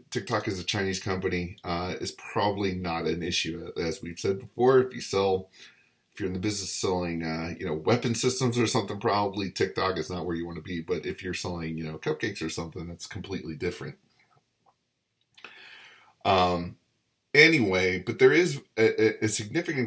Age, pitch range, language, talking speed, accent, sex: 30-49, 85-110 Hz, English, 180 wpm, American, male